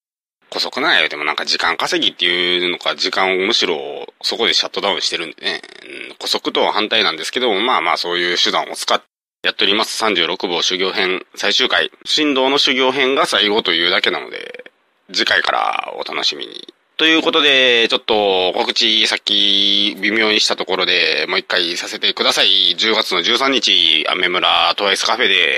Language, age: Japanese, 30-49